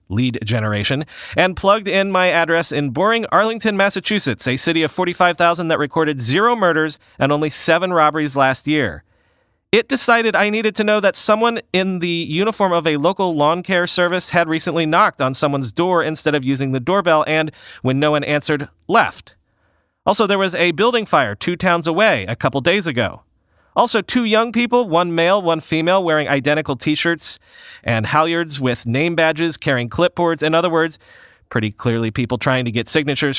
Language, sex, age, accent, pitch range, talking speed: English, male, 40-59, American, 125-180 Hz, 180 wpm